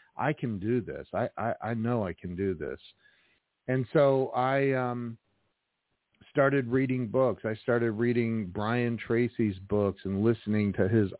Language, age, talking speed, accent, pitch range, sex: English, 50-69, 155 wpm, American, 95-120 Hz, male